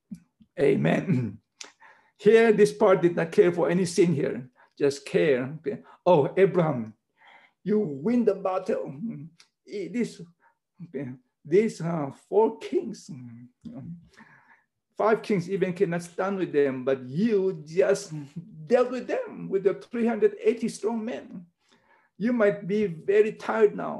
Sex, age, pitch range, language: male, 60-79, 165-215 Hz, English